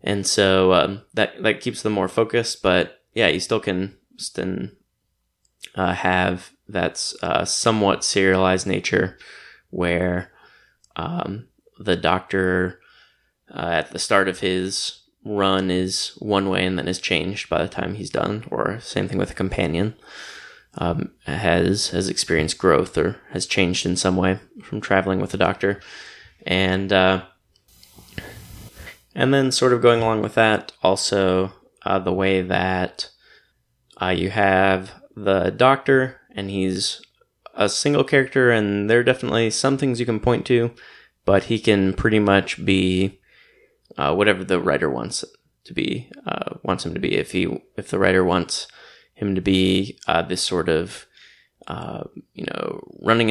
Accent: American